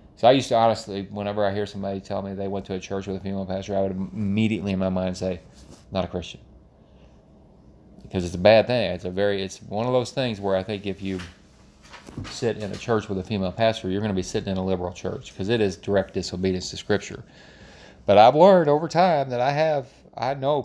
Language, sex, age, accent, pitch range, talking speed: English, male, 30-49, American, 95-115 Hz, 240 wpm